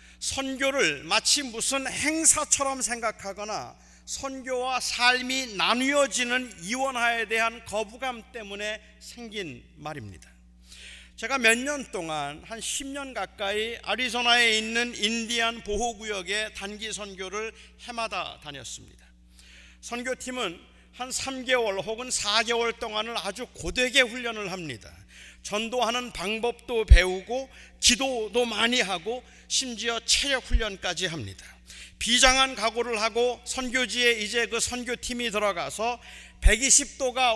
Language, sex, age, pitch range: Korean, male, 40-59, 210-260 Hz